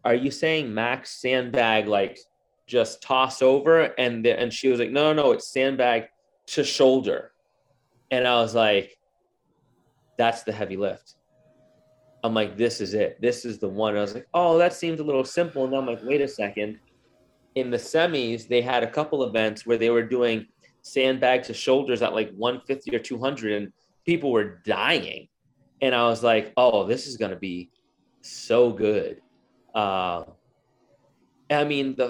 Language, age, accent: English, 30-49, American